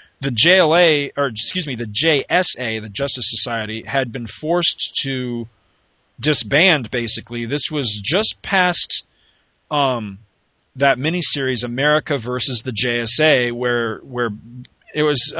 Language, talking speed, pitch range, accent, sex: English, 120 wpm, 120-150 Hz, American, male